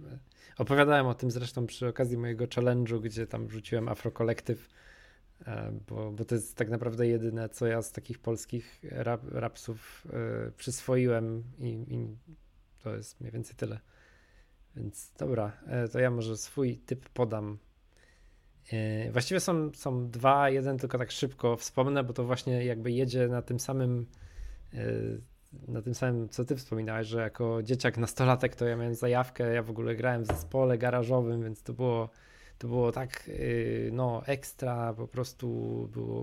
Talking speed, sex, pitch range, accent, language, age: 150 wpm, male, 115-130 Hz, native, Polish, 20-39